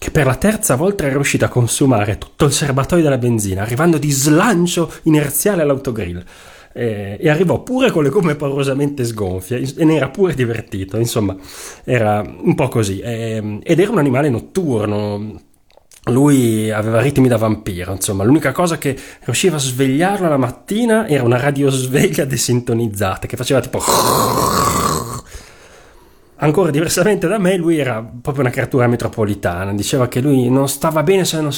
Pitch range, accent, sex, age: 110-155 Hz, native, male, 30-49